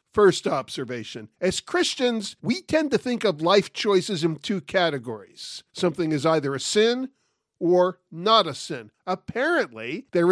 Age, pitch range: 50-69, 170-235 Hz